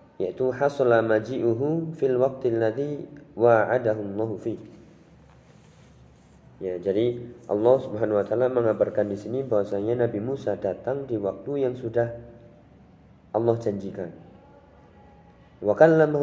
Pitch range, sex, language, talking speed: 100-125 Hz, male, Indonesian, 85 wpm